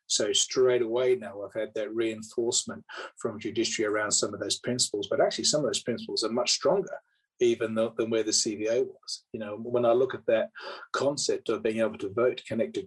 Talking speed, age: 210 wpm, 40-59